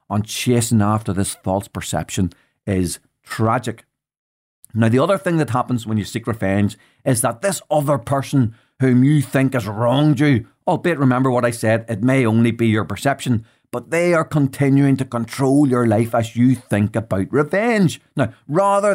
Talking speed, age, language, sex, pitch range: 175 wpm, 40-59, English, male, 120-150 Hz